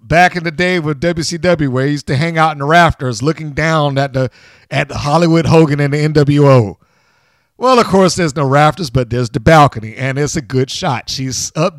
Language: English